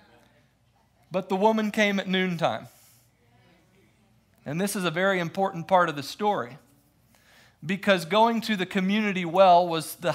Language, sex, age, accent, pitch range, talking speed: English, male, 40-59, American, 130-175 Hz, 140 wpm